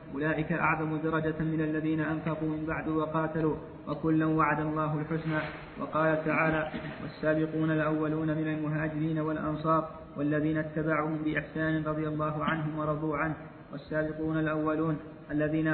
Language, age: Arabic, 20-39